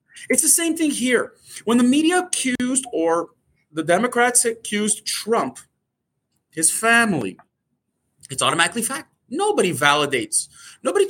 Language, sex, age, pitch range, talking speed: English, male, 30-49, 180-295 Hz, 120 wpm